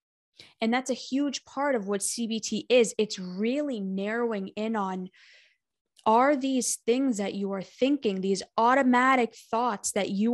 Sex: female